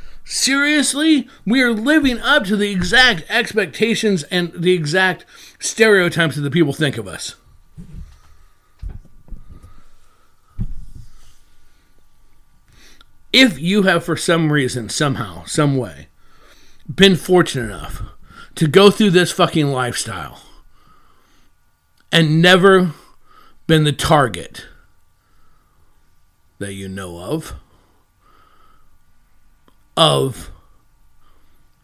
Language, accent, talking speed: English, American, 90 wpm